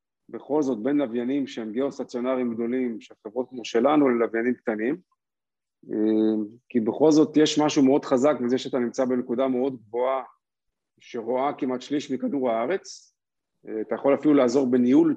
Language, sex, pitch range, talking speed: Hebrew, male, 120-140 Hz, 140 wpm